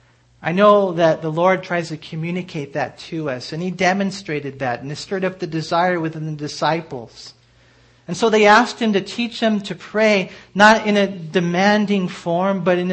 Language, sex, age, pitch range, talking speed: English, male, 40-59, 160-210 Hz, 190 wpm